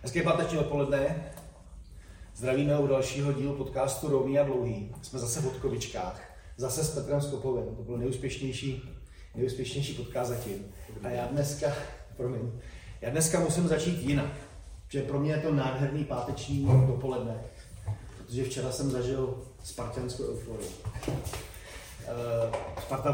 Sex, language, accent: male, Czech, native